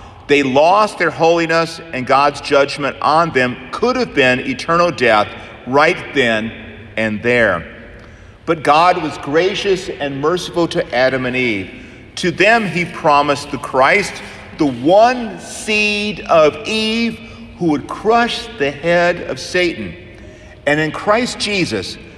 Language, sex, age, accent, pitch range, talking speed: English, male, 50-69, American, 120-185 Hz, 135 wpm